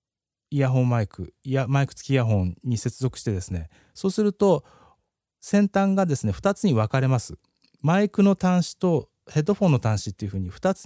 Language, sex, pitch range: Japanese, male, 105-155 Hz